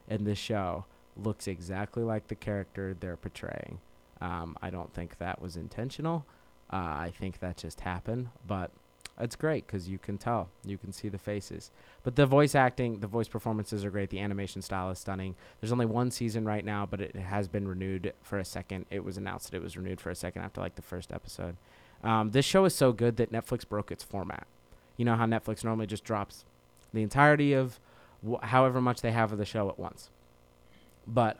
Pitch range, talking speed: 95-120 Hz, 210 wpm